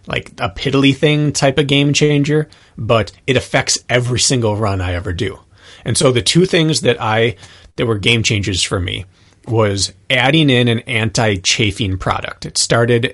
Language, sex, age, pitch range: English, male, 30-49, 95-125 Hz